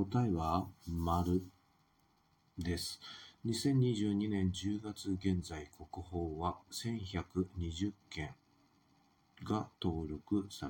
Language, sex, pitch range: Japanese, male, 85-100 Hz